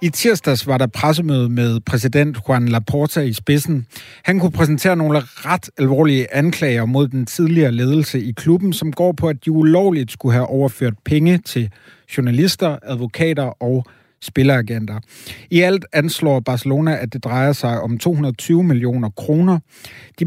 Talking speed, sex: 155 wpm, male